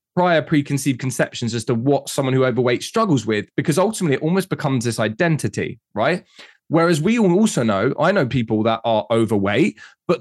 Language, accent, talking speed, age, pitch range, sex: English, British, 180 wpm, 20-39, 120-170 Hz, male